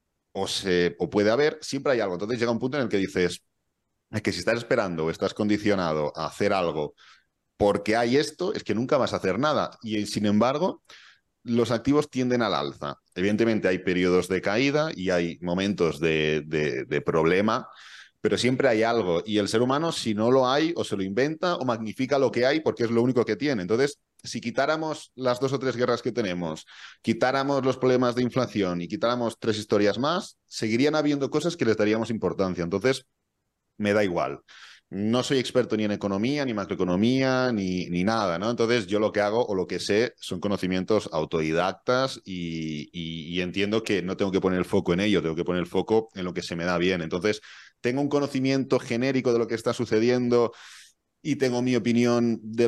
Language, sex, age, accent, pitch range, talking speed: Spanish, male, 30-49, Spanish, 95-125 Hz, 200 wpm